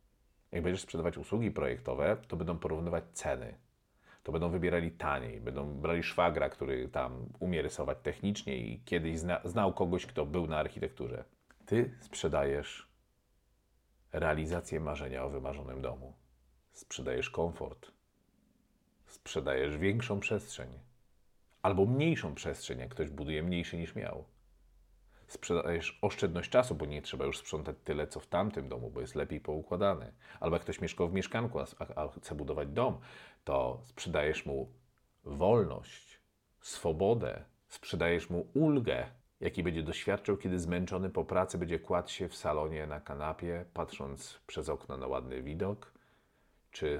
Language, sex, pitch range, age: Polish, male, 70-90 Hz, 40-59